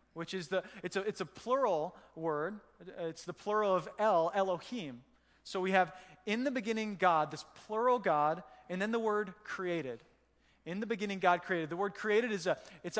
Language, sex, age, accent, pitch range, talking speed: English, male, 20-39, American, 170-210 Hz, 190 wpm